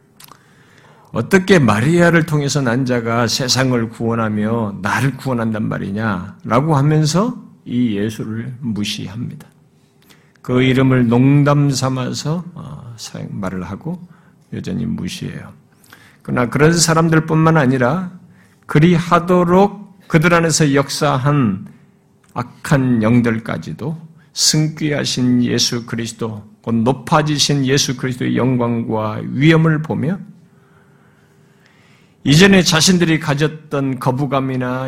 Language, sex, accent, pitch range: Korean, male, native, 120-165 Hz